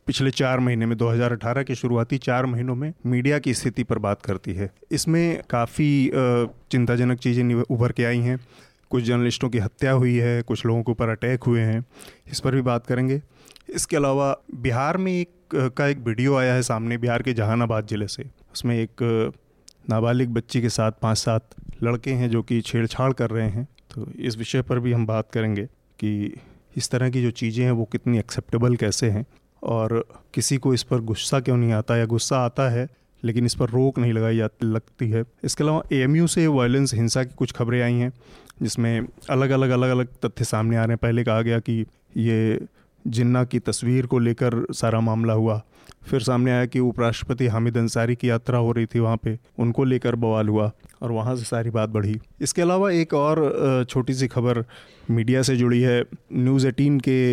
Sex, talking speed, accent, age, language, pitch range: male, 200 wpm, native, 30-49, Hindi, 115-130 Hz